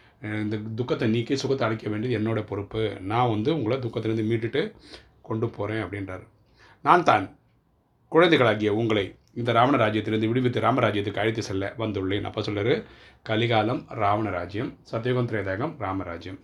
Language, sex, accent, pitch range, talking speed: Tamil, male, native, 105-120 Hz, 115 wpm